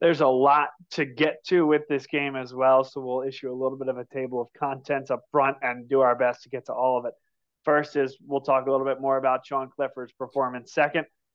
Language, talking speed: English, 250 wpm